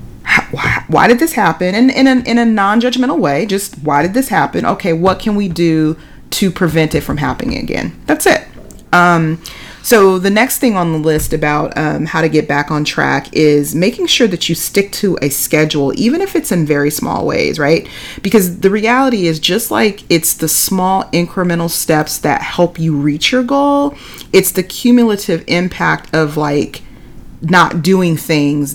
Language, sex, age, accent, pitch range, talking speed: English, female, 30-49, American, 150-200 Hz, 190 wpm